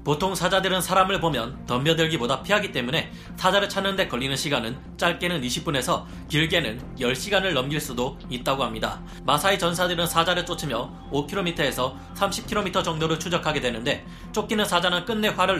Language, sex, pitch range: Korean, male, 130-180 Hz